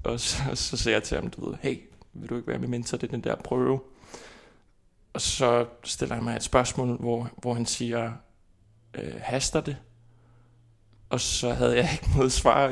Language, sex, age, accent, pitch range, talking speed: Danish, male, 20-39, native, 110-130 Hz, 205 wpm